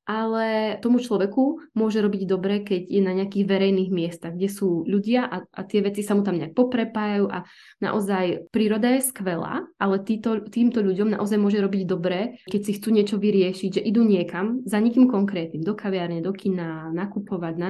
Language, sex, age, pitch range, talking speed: Czech, female, 20-39, 180-215 Hz, 185 wpm